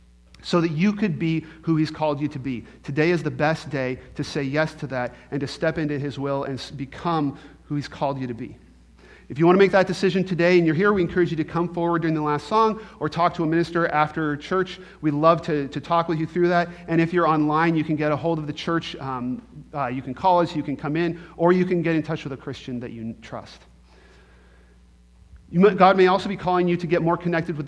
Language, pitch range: English, 140-170 Hz